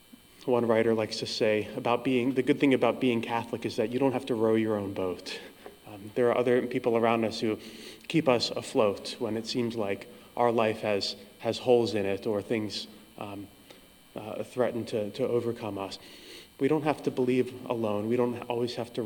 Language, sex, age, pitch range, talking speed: English, male, 20-39, 105-125 Hz, 205 wpm